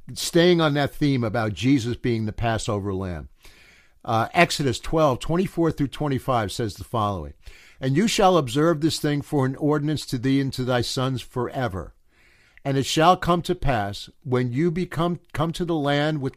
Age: 60-79